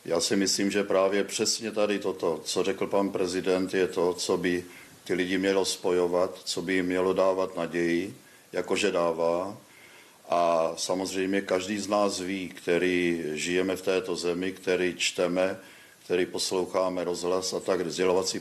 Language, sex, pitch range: Czech, male, 90-100 Hz